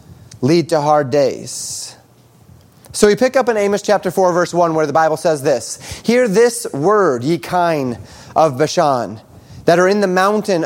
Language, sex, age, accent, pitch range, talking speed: English, male, 30-49, American, 160-205 Hz, 175 wpm